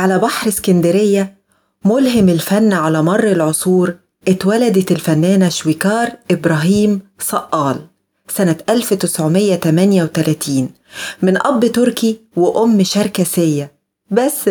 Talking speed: 85 wpm